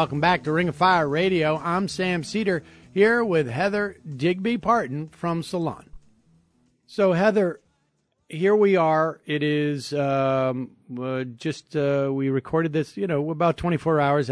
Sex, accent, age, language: male, American, 50-69, English